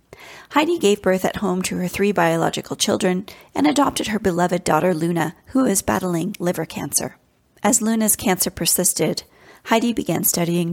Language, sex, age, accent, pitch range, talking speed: English, female, 30-49, American, 175-215 Hz, 155 wpm